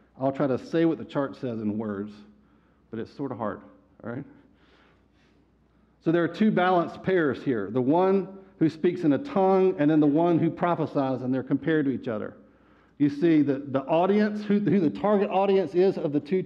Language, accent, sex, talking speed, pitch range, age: English, American, male, 210 wpm, 140-190 Hz, 50-69